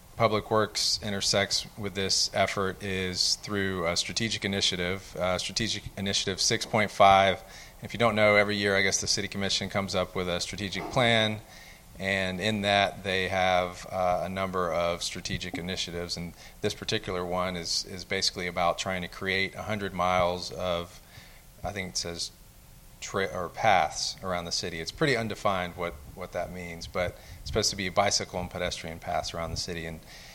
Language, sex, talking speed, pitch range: English, male, 175 wpm, 90-100 Hz